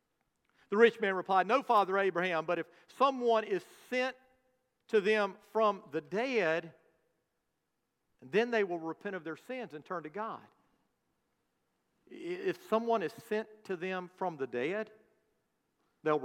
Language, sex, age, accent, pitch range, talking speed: English, male, 50-69, American, 170-265 Hz, 140 wpm